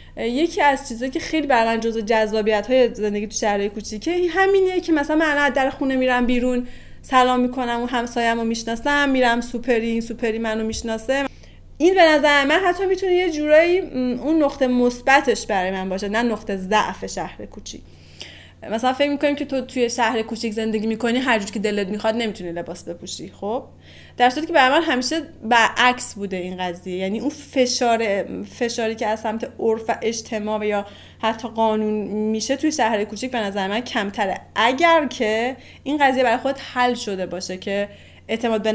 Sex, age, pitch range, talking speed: female, 30-49, 210-260 Hz, 175 wpm